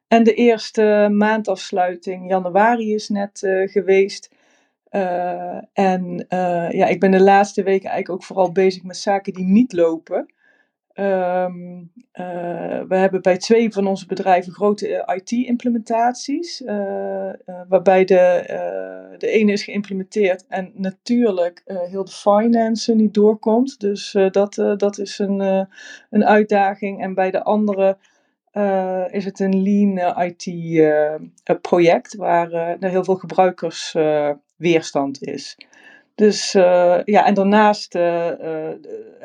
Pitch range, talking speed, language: 180-215 Hz, 135 wpm, Dutch